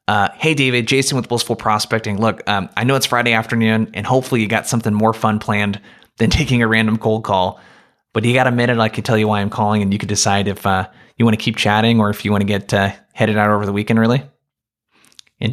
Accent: American